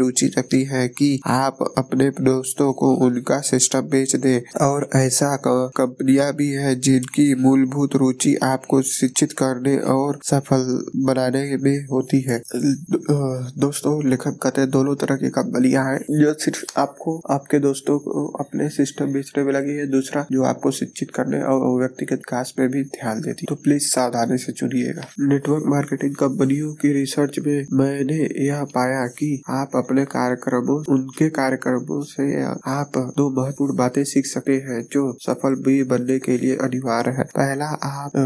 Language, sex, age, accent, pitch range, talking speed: Hindi, male, 20-39, native, 130-140 Hz, 140 wpm